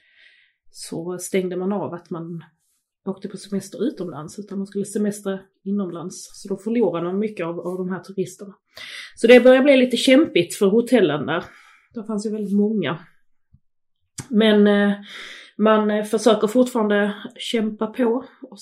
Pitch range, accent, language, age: 185-220 Hz, native, Swedish, 30-49